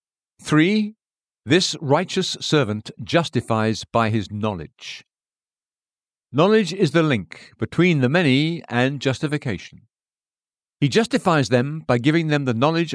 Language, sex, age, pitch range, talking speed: English, male, 50-69, 115-160 Hz, 115 wpm